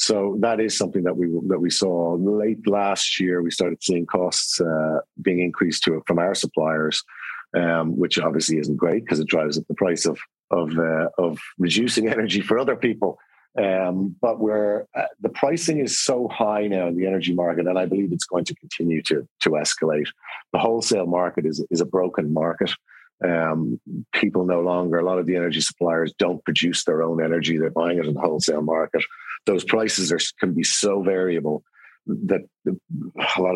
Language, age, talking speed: English, 50-69, 190 wpm